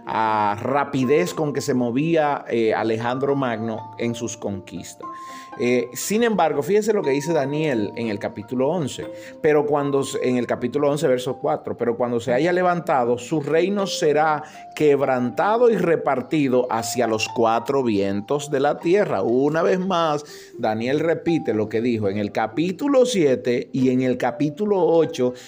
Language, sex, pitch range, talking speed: Spanish, male, 120-180 Hz, 160 wpm